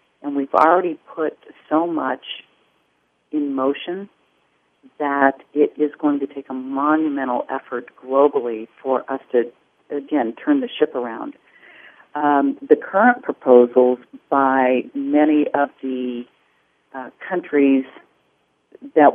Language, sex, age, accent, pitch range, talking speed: English, female, 50-69, American, 130-155 Hz, 115 wpm